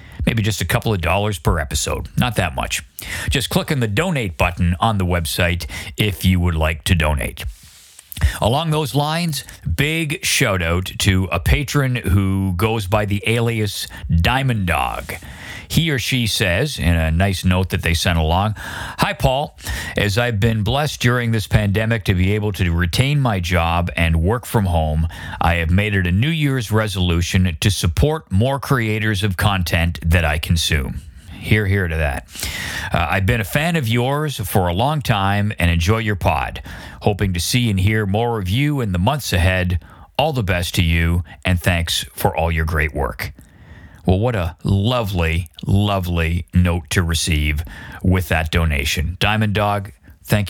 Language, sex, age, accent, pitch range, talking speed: English, male, 50-69, American, 85-110 Hz, 175 wpm